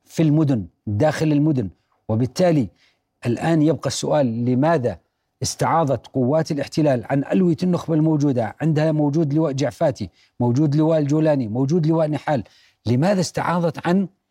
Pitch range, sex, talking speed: 140-170 Hz, male, 120 wpm